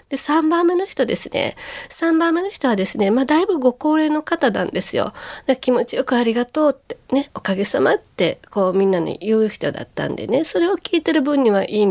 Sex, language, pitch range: female, Japanese, 195-275 Hz